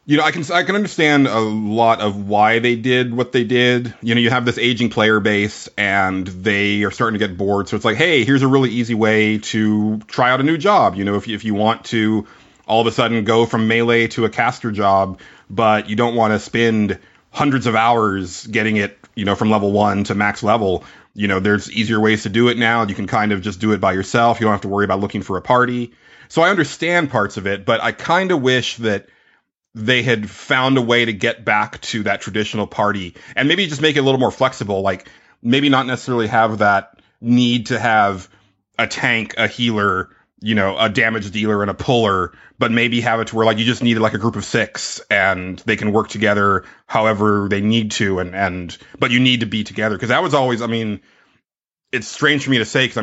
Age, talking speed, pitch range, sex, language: 30-49, 240 wpm, 105-120 Hz, male, English